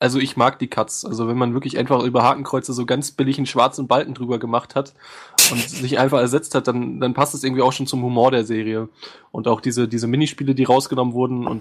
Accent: German